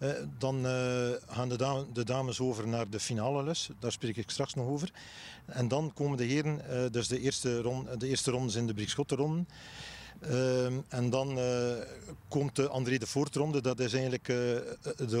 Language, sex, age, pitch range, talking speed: Dutch, male, 40-59, 115-135 Hz, 195 wpm